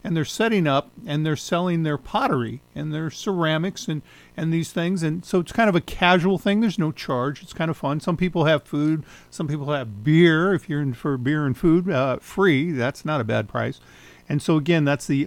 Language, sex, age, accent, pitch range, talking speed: English, male, 50-69, American, 135-175 Hz, 230 wpm